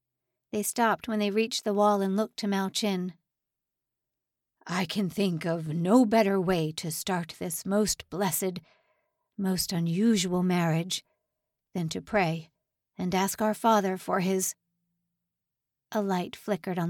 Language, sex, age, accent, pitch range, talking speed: English, female, 50-69, American, 180-225 Hz, 140 wpm